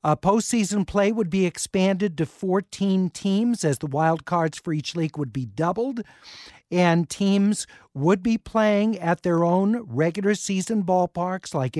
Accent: American